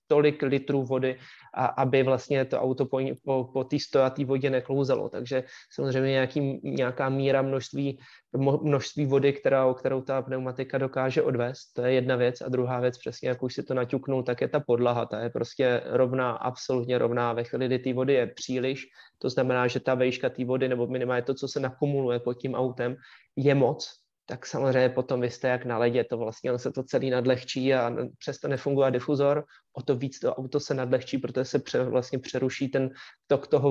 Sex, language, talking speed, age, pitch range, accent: male, Czech, 200 wpm, 20-39, 125-135 Hz, native